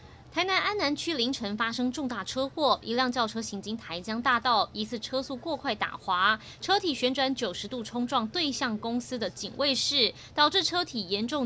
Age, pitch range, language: 20-39, 215-295 Hz, Chinese